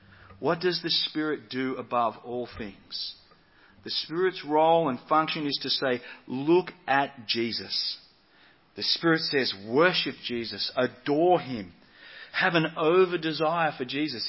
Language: English